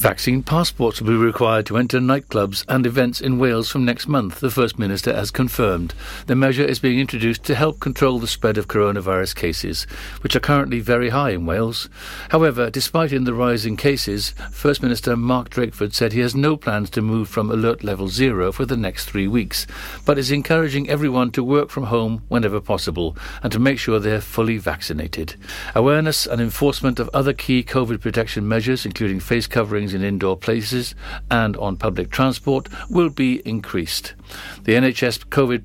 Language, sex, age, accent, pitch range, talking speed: English, male, 60-79, British, 105-135 Hz, 185 wpm